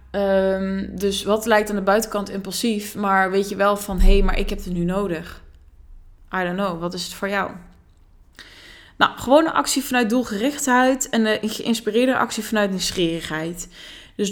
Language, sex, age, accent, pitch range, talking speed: Dutch, female, 20-39, Dutch, 180-245 Hz, 175 wpm